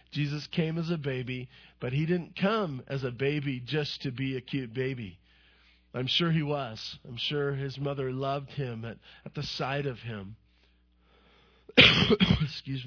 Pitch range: 95-140 Hz